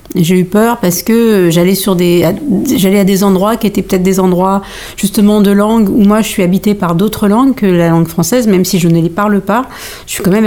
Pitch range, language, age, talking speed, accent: 180-210 Hz, French, 50-69, 250 wpm, French